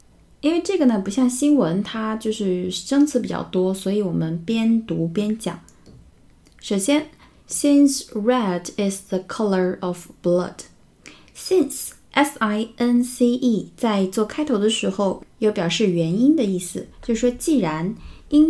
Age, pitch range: 20-39, 185-250 Hz